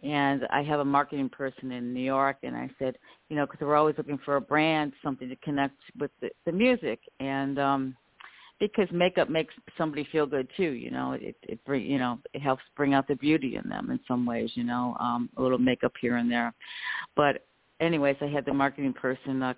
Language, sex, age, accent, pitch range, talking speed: English, female, 50-69, American, 135-165 Hz, 220 wpm